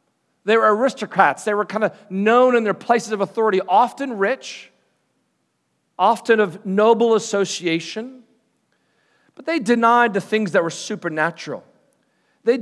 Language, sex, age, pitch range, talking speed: English, male, 40-59, 180-225 Hz, 135 wpm